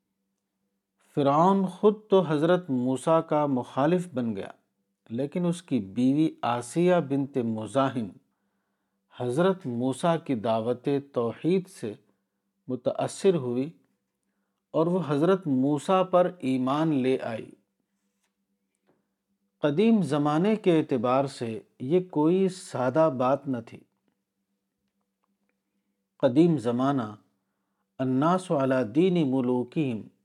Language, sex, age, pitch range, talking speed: Urdu, male, 50-69, 105-165 Hz, 95 wpm